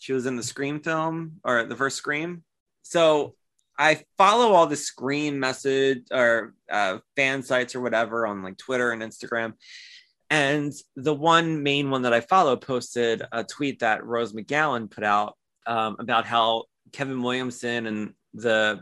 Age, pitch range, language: 20-39, 110-135 Hz, English